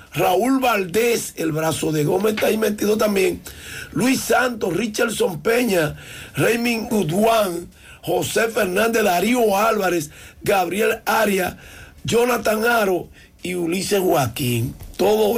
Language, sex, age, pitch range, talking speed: Spanish, male, 60-79, 155-235 Hz, 110 wpm